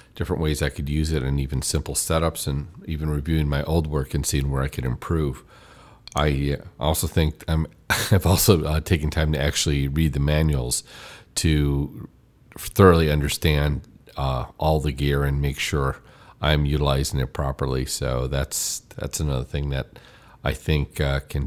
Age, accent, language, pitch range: 40-59, American, English, 70-85 Hz